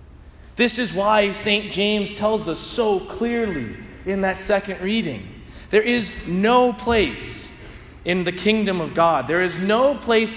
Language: English